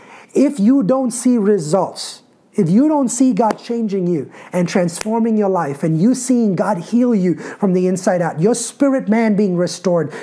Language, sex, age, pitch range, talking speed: English, male, 30-49, 150-195 Hz, 180 wpm